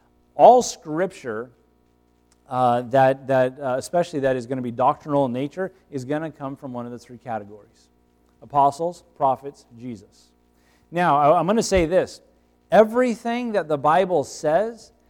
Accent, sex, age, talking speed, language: American, male, 40-59, 155 wpm, English